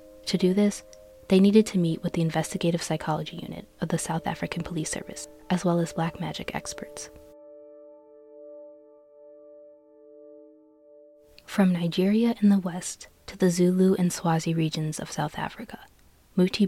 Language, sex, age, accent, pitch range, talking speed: English, female, 20-39, American, 155-190 Hz, 140 wpm